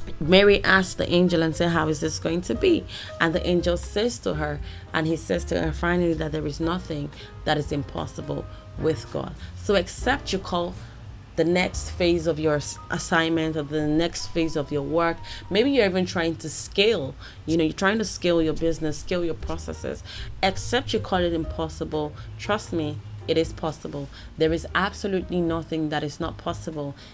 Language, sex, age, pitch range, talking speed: English, female, 20-39, 145-175 Hz, 190 wpm